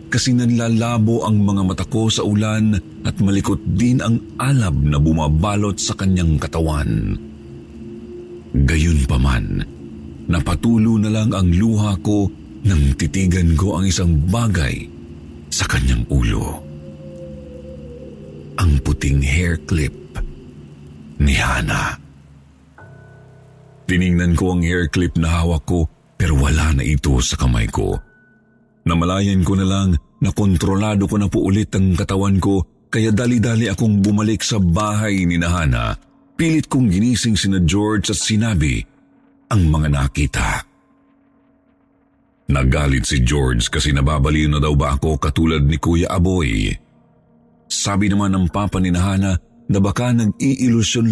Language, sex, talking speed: Filipino, male, 125 wpm